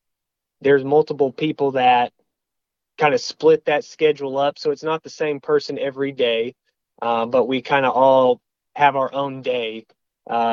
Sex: male